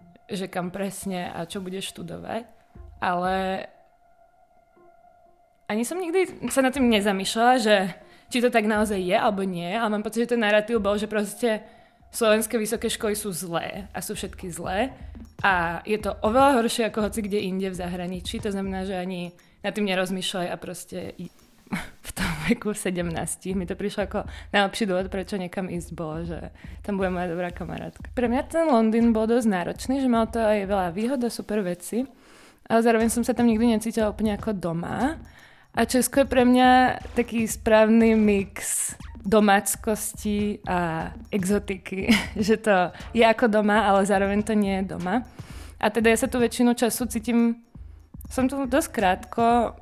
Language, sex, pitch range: Czech, female, 190-235 Hz